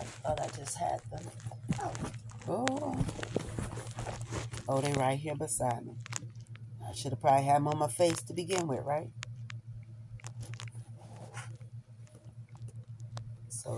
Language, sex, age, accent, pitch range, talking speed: English, female, 40-59, American, 120-150 Hz, 115 wpm